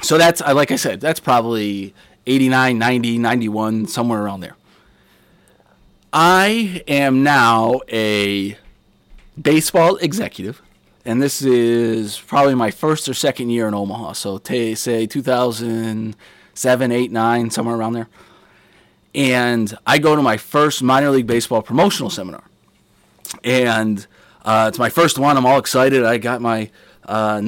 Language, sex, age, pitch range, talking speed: English, male, 30-49, 110-135 Hz, 145 wpm